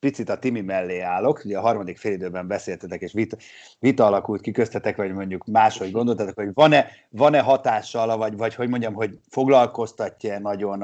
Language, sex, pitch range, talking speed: Hungarian, male, 95-120 Hz, 170 wpm